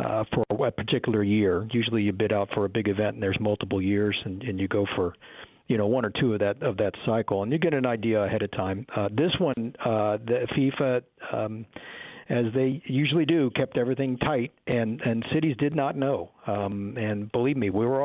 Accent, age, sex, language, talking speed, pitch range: American, 50-69, male, English, 220 wpm, 105-140 Hz